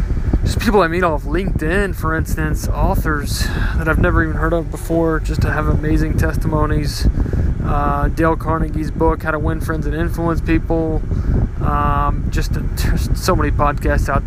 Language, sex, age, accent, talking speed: English, male, 20-39, American, 165 wpm